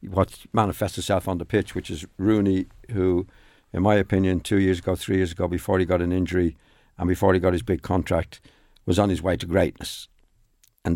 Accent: British